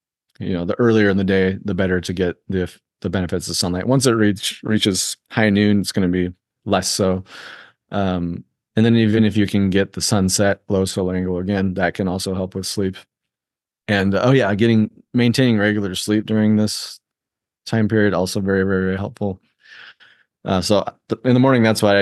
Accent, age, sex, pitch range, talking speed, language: American, 30-49, male, 90-105 Hz, 195 wpm, English